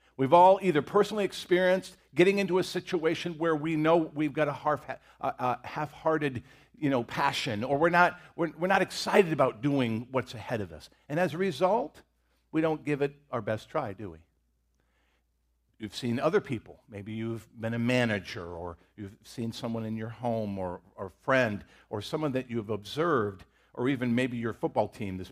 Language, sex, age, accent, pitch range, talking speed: English, male, 50-69, American, 110-170 Hz, 185 wpm